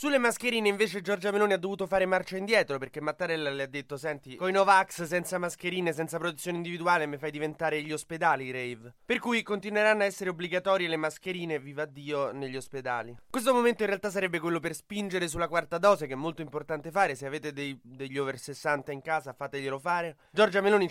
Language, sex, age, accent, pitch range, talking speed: Italian, male, 20-39, native, 145-190 Hz, 195 wpm